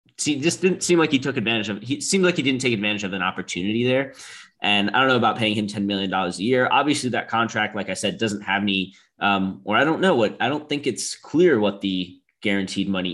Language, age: English, 20-39